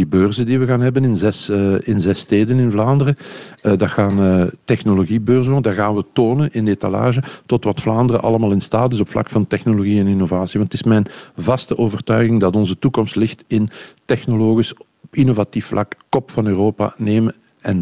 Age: 50-69